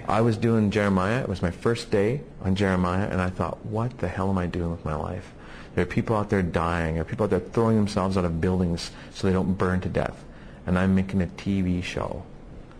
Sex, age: male, 40-59